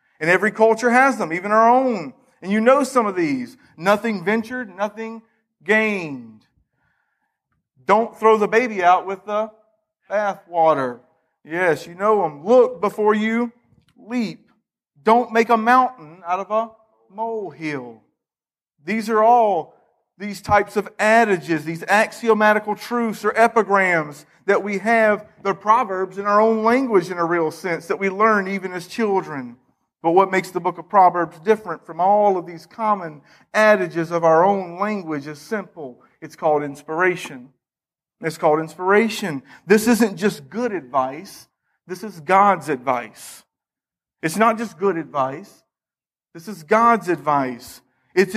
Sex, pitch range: male, 175-220 Hz